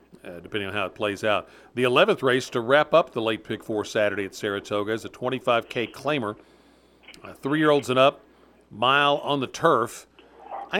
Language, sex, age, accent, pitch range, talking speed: English, male, 50-69, American, 115-135 Hz, 185 wpm